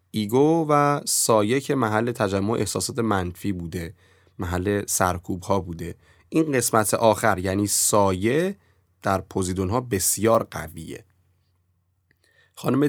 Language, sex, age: Persian, male, 30-49